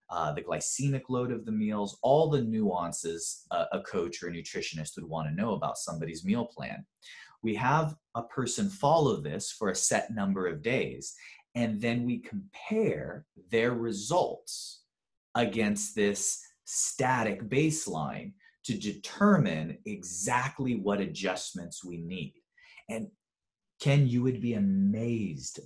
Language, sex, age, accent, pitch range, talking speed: English, male, 30-49, American, 100-145 Hz, 140 wpm